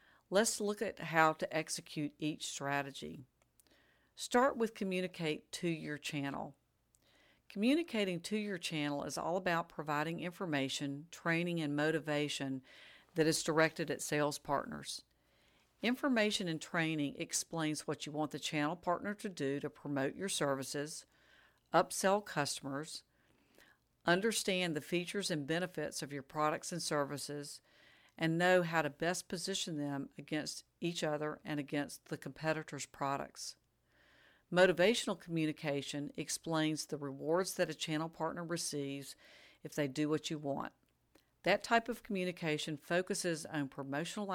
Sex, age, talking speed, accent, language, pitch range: female, 50-69, 135 wpm, American, English, 145-180 Hz